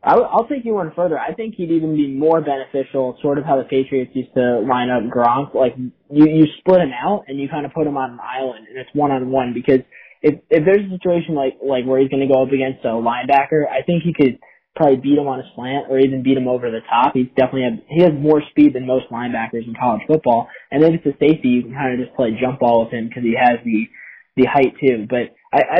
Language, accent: English, American